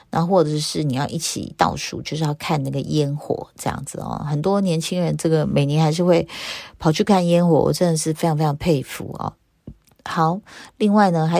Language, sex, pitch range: Chinese, female, 140-175 Hz